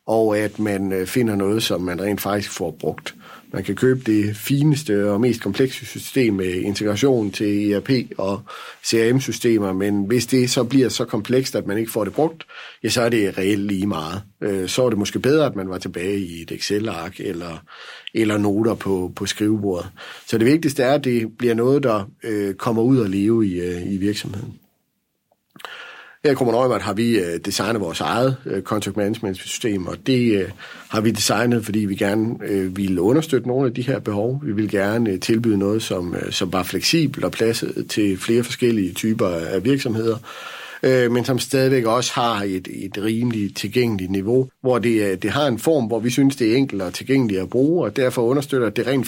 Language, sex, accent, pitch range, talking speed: Danish, male, native, 100-125 Hz, 185 wpm